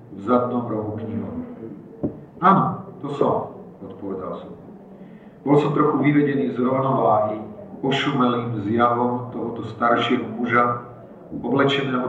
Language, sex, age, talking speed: Slovak, male, 50-69, 105 wpm